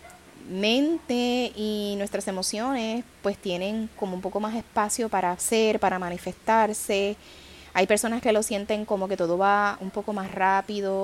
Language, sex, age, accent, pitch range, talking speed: Spanish, female, 20-39, American, 180-235 Hz, 150 wpm